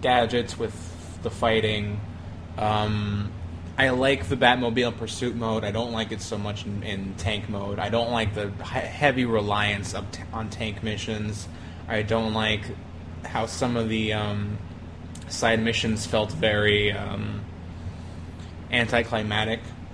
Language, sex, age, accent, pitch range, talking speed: English, male, 20-39, American, 95-110 Hz, 140 wpm